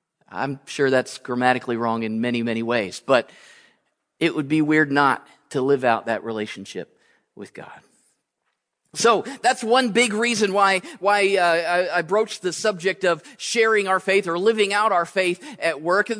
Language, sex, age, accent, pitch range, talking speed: English, male, 40-59, American, 180-240 Hz, 170 wpm